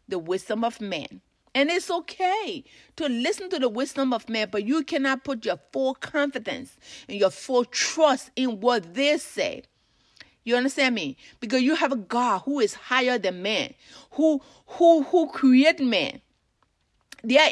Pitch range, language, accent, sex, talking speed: 240-310 Hz, English, American, female, 165 wpm